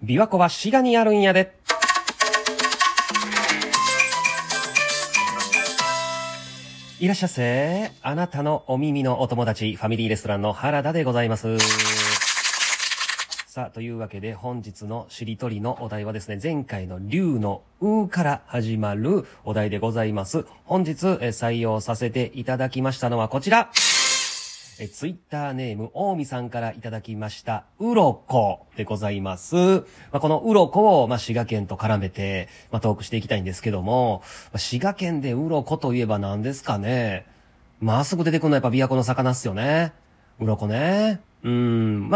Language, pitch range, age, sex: Japanese, 105-155 Hz, 40-59, male